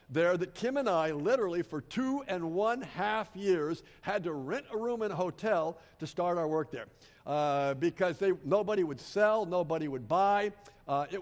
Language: English